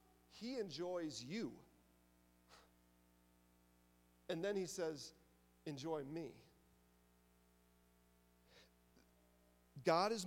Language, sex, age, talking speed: English, male, 40-59, 65 wpm